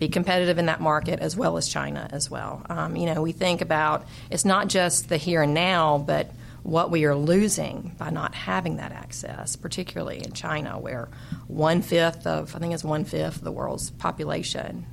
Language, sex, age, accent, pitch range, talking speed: English, female, 40-59, American, 145-175 Hz, 195 wpm